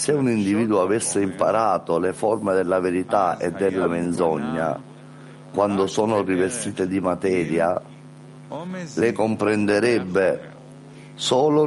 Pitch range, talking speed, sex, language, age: 95-115 Hz, 105 wpm, male, Italian, 50-69